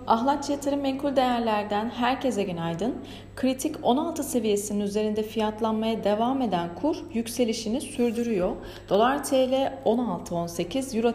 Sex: female